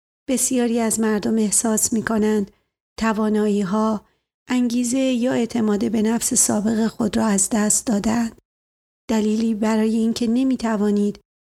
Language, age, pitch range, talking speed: Persian, 40-59, 210-230 Hz, 115 wpm